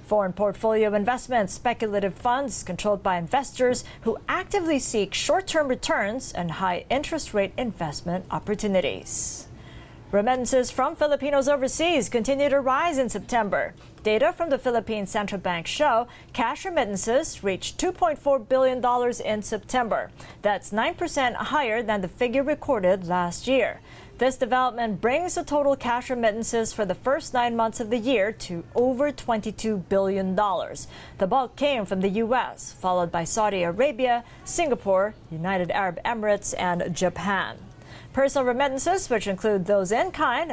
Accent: American